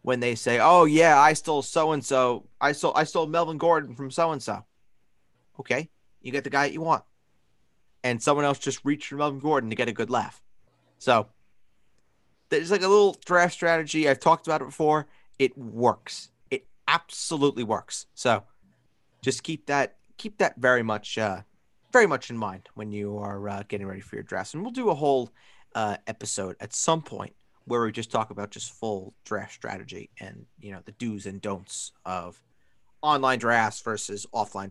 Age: 30-49